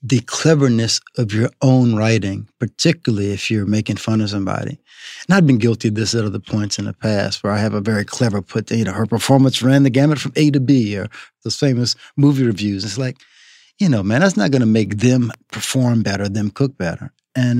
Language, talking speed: English, 220 wpm